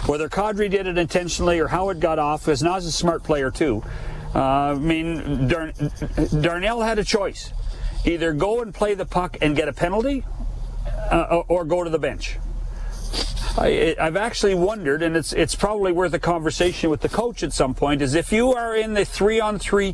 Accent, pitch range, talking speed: American, 155-200 Hz, 195 wpm